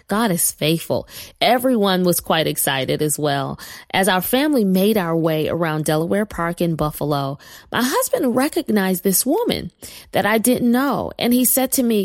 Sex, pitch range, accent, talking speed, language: female, 175-260 Hz, American, 170 wpm, English